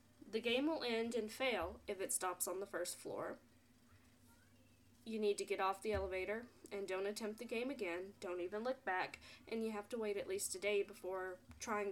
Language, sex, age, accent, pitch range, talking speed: English, female, 10-29, American, 190-235 Hz, 205 wpm